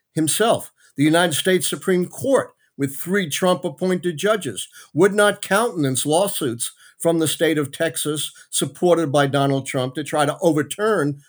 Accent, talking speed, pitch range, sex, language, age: American, 145 wpm, 135-170 Hz, male, English, 50-69